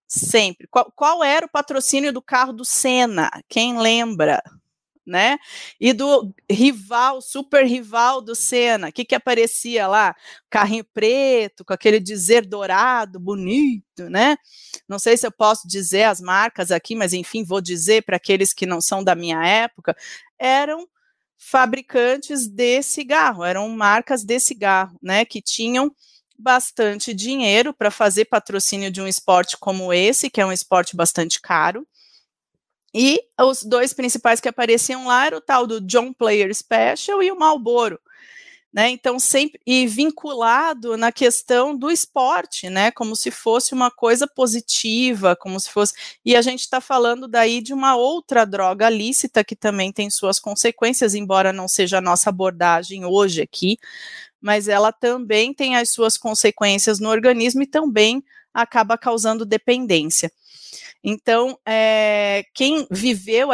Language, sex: Portuguese, female